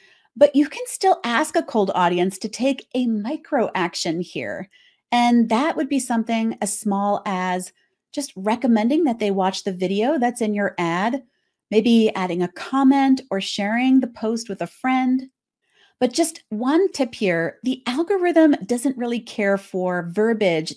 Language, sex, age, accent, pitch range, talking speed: English, female, 40-59, American, 200-275 Hz, 160 wpm